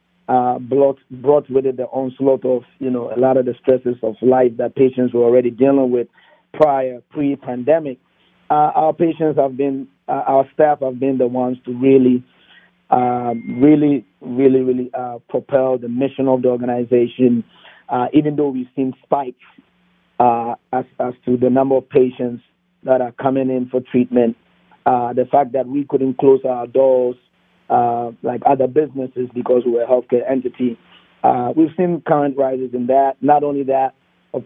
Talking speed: 170 wpm